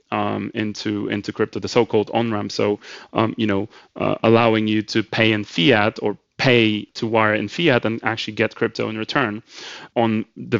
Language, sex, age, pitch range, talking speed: English, male, 30-49, 105-130 Hz, 180 wpm